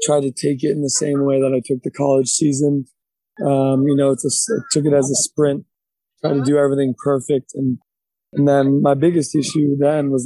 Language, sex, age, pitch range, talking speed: English, male, 20-39, 130-145 Hz, 220 wpm